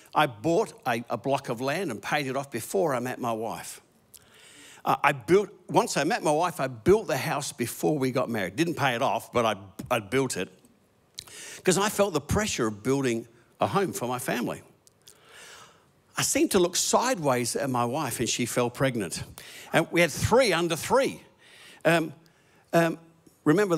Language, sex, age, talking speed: English, male, 50-69, 185 wpm